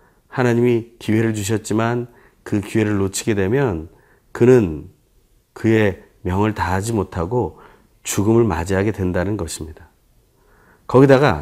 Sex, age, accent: male, 40-59, native